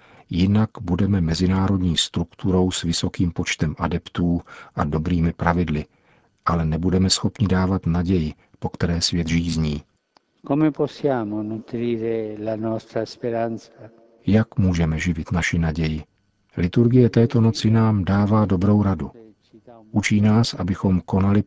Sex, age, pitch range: male, 50-69, 85-105 Hz